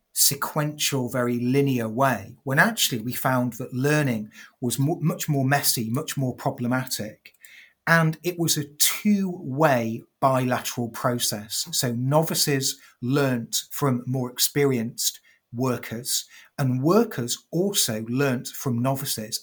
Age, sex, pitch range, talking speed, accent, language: 30-49, male, 120-145 Hz, 115 wpm, British, English